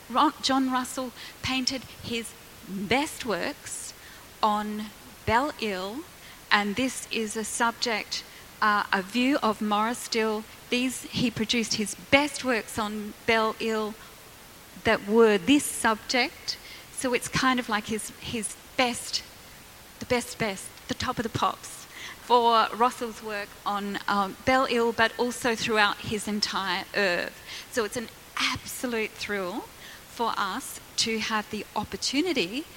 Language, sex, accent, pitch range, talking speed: English, female, Australian, 215-250 Hz, 135 wpm